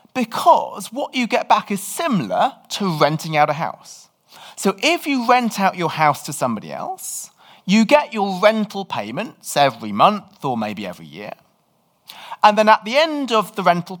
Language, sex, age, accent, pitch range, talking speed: English, male, 30-49, British, 155-225 Hz, 175 wpm